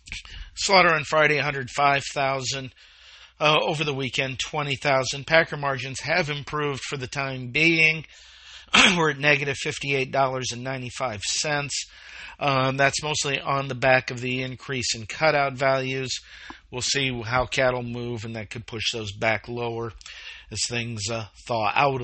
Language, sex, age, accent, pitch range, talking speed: English, male, 50-69, American, 125-160 Hz, 130 wpm